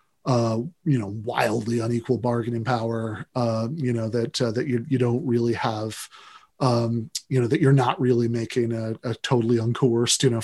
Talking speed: 185 wpm